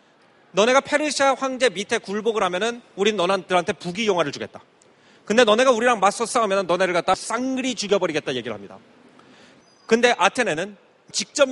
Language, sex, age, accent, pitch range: Korean, male, 30-49, native, 210-255 Hz